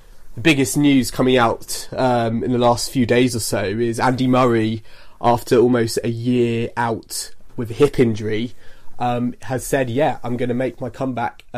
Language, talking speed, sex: English, 180 wpm, male